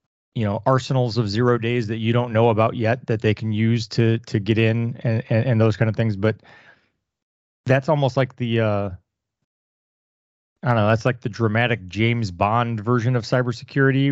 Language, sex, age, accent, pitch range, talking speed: English, male, 30-49, American, 110-125 Hz, 190 wpm